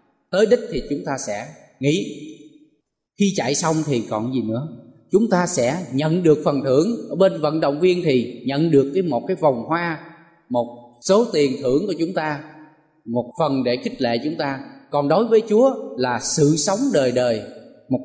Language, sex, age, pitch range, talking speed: Vietnamese, male, 20-39, 135-185 Hz, 195 wpm